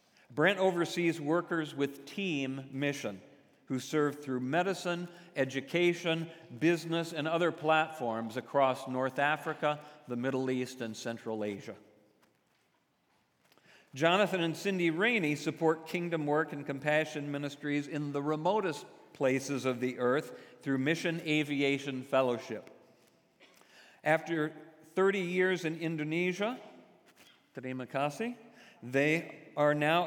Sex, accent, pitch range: male, American, 135-165 Hz